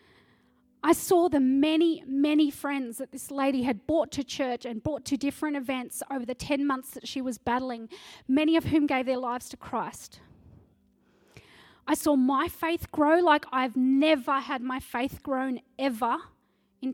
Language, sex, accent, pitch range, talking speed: English, female, Australian, 260-310 Hz, 170 wpm